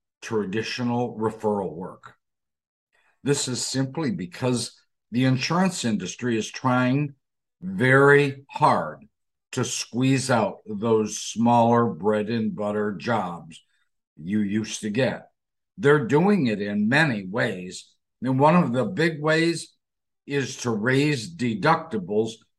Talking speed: 115 wpm